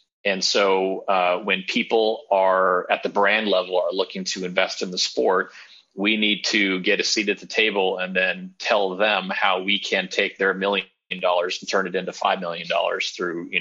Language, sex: English, male